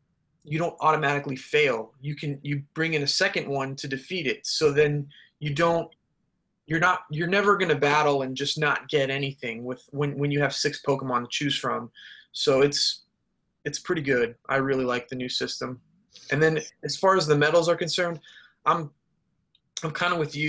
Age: 20-39